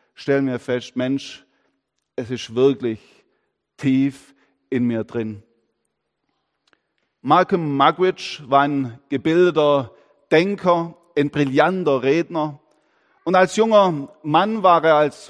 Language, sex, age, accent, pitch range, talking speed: German, male, 40-59, German, 140-180 Hz, 105 wpm